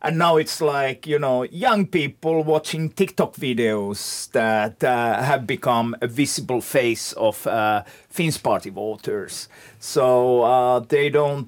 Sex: male